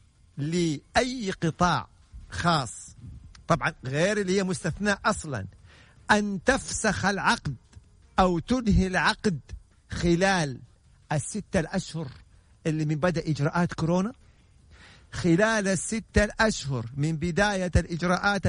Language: Arabic